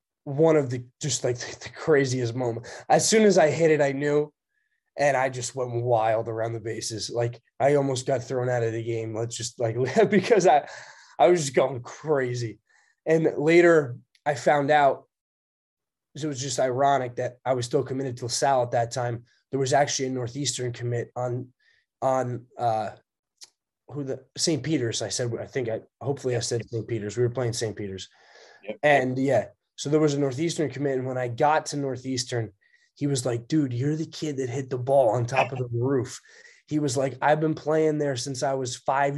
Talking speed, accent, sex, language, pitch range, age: 200 wpm, American, male, English, 120-145 Hz, 20-39